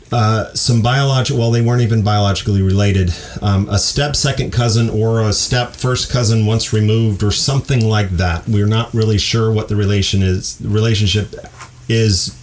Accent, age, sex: American, 40-59, male